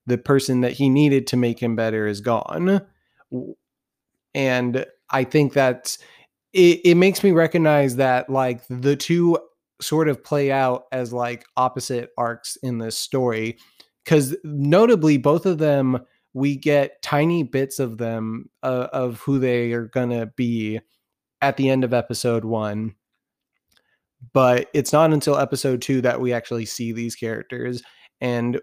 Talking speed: 155 wpm